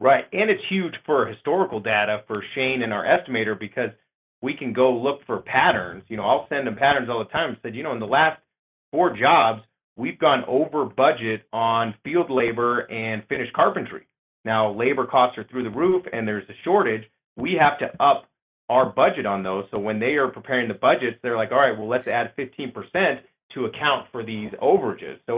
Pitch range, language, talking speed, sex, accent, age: 105-140 Hz, English, 205 wpm, male, American, 30-49